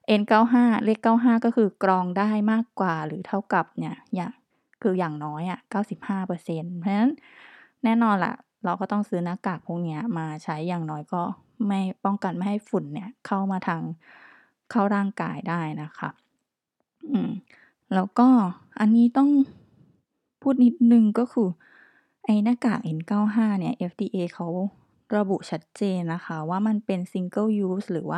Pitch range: 175-220 Hz